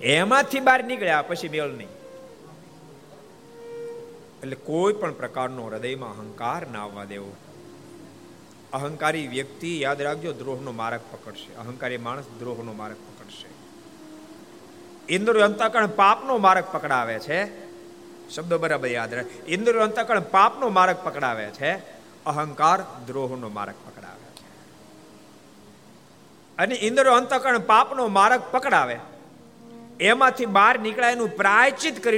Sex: male